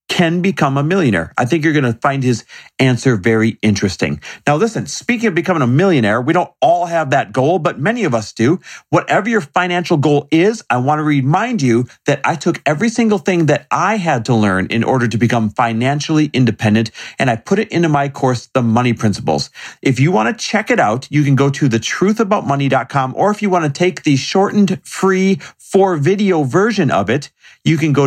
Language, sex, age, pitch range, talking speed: English, male, 40-59, 120-175 Hz, 210 wpm